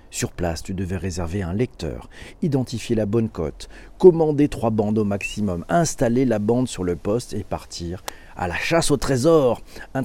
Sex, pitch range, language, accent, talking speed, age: male, 95-130 Hz, French, French, 180 wpm, 50-69